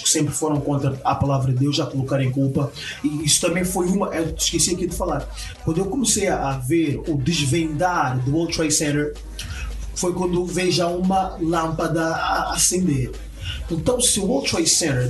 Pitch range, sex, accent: 140-185 Hz, male, Brazilian